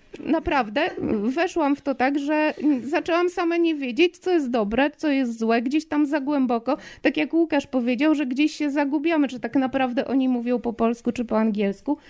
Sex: female